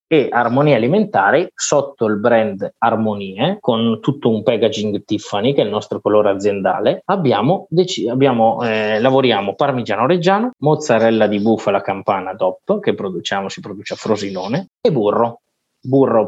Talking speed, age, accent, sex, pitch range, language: 145 wpm, 20-39, native, male, 105-150 Hz, Italian